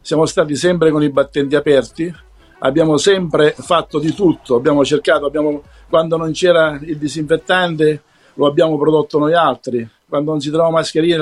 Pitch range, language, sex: 145-175 Hz, Italian, male